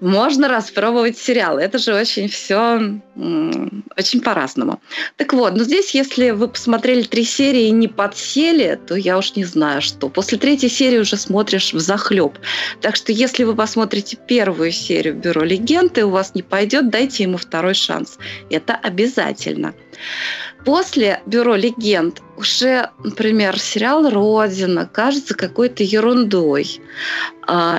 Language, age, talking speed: Russian, 20-39, 140 wpm